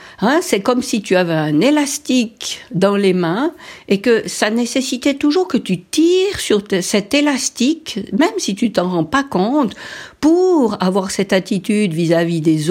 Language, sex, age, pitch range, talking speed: French, female, 60-79, 180-245 Hz, 170 wpm